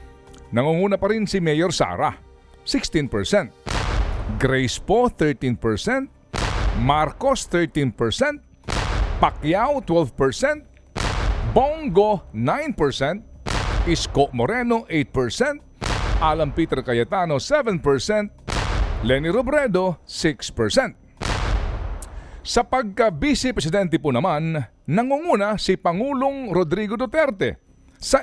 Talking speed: 80 wpm